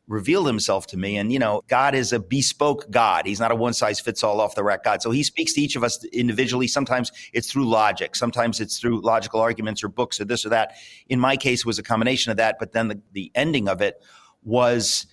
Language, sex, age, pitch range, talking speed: English, male, 40-59, 110-140 Hz, 240 wpm